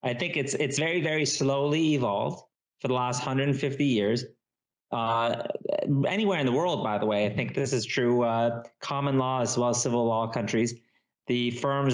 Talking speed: 195 wpm